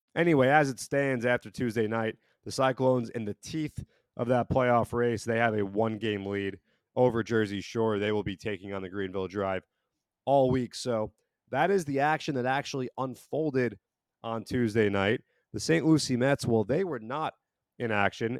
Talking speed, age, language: 180 wpm, 30-49, English